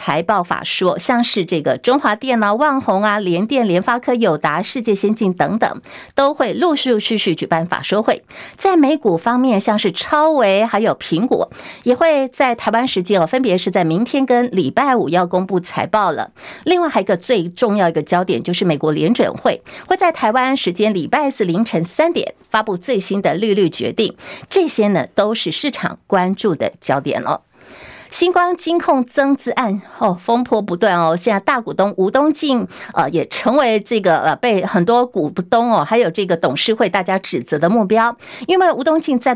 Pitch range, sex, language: 195-270 Hz, female, Chinese